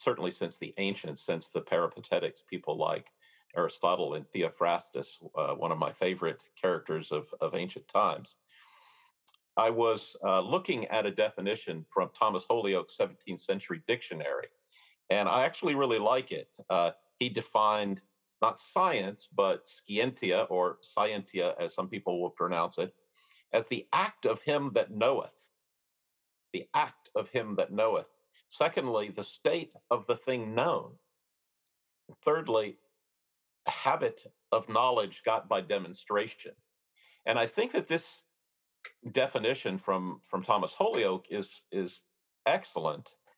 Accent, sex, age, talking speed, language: American, male, 50-69, 135 wpm, English